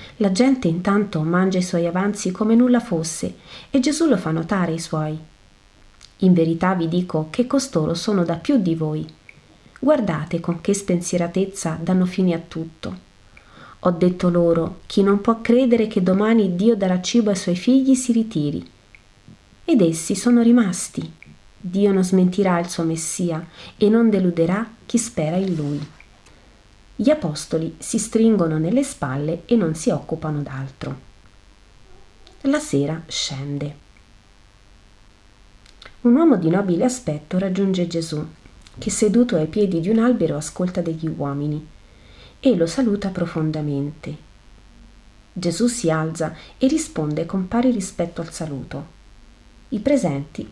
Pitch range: 150-210 Hz